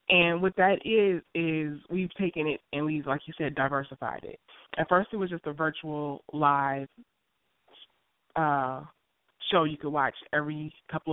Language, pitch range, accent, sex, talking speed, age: English, 135-155 Hz, American, female, 160 wpm, 20-39